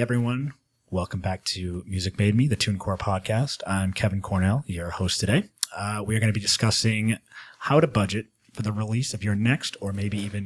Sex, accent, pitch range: male, American, 95-115 Hz